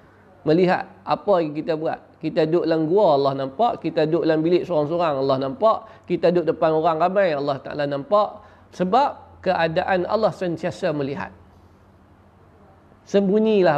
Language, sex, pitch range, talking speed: Malay, male, 140-195 Hz, 140 wpm